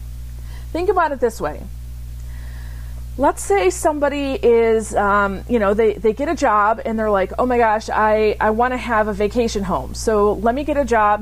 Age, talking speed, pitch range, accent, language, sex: 40-59, 195 wpm, 180-245 Hz, American, English, female